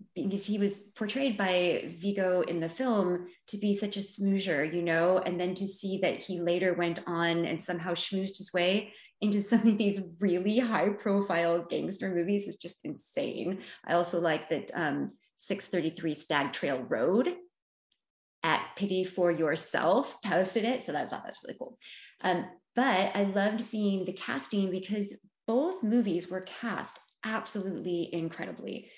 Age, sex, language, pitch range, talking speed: 20-39, female, English, 170-200 Hz, 160 wpm